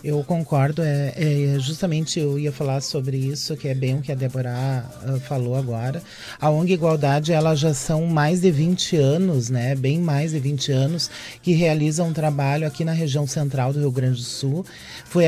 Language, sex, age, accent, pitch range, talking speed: Portuguese, male, 30-49, Brazilian, 150-195 Hz, 195 wpm